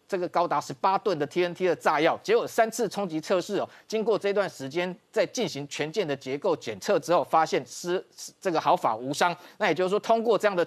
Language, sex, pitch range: Chinese, male, 155-210 Hz